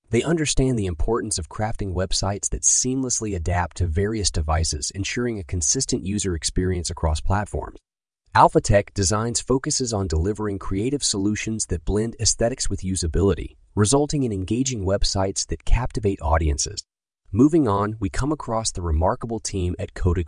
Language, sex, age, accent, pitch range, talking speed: English, male, 30-49, American, 85-110 Hz, 145 wpm